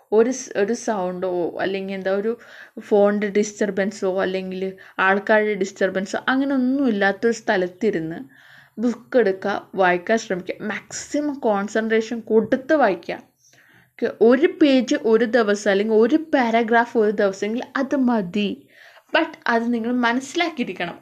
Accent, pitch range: native, 210-275 Hz